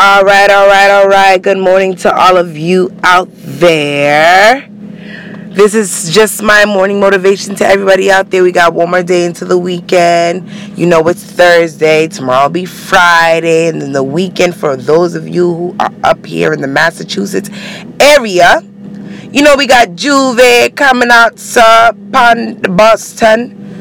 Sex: female